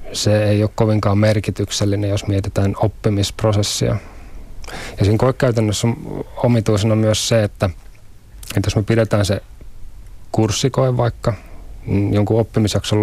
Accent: native